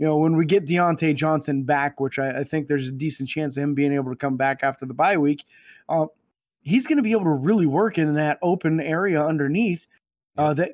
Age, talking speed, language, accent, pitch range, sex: 20-39, 240 wpm, English, American, 150-185 Hz, male